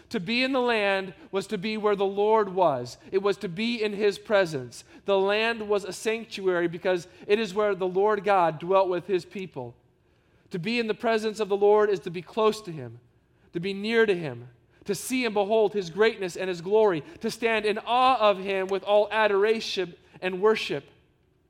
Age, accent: 40-59, American